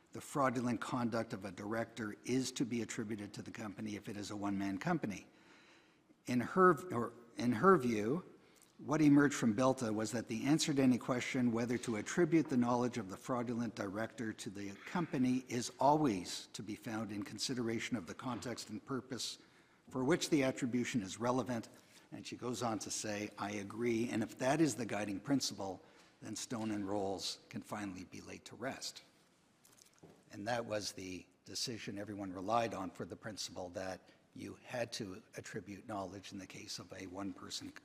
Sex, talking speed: male, 180 wpm